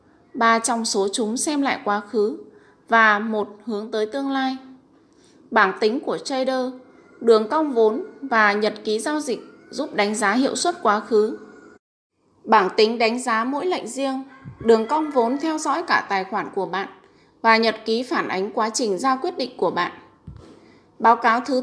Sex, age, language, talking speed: female, 20-39, Vietnamese, 180 wpm